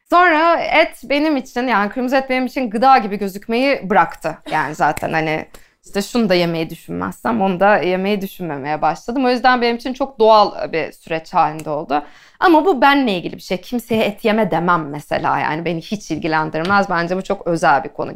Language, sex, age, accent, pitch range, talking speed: Turkish, female, 20-39, native, 185-265 Hz, 190 wpm